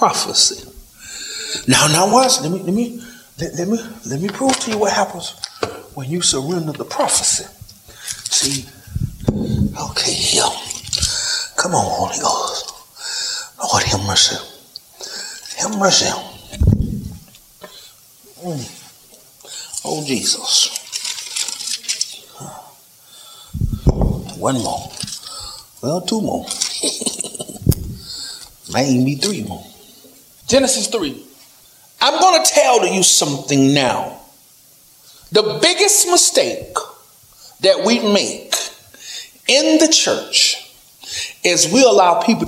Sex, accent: male, American